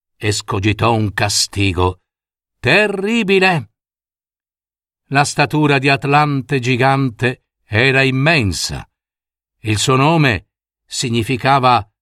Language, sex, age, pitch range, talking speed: Italian, male, 50-69, 105-160 Hz, 75 wpm